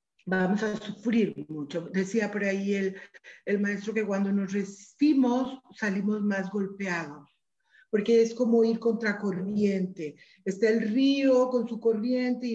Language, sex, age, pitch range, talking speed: Spanish, female, 40-59, 205-250 Hz, 145 wpm